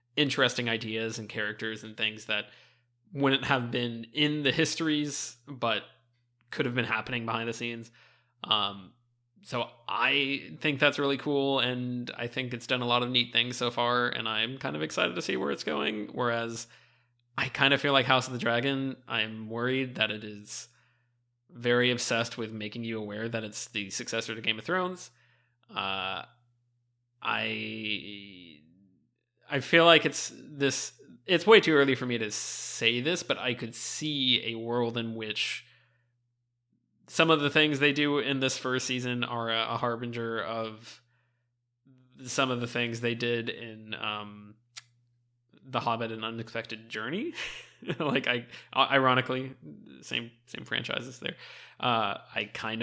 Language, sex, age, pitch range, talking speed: English, male, 20-39, 115-130 Hz, 160 wpm